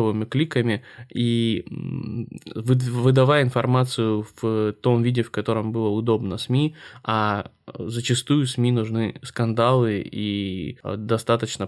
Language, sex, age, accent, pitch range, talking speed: Russian, male, 20-39, native, 110-125 Hz, 100 wpm